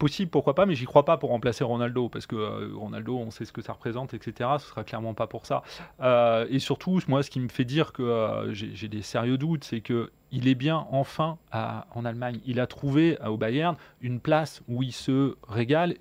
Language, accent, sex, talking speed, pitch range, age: French, French, male, 235 wpm, 115-155 Hz, 30-49